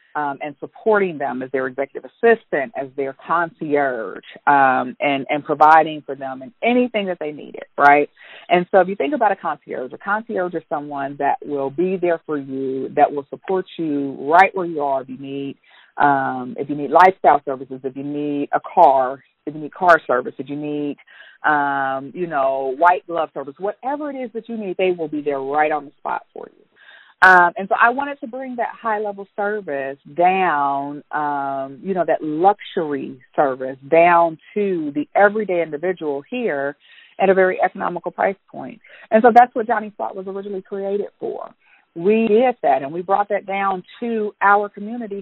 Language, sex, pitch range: English, female, 145-205 Hz